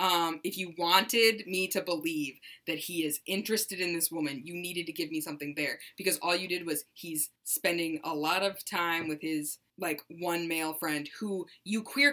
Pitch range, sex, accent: 160-195 Hz, female, American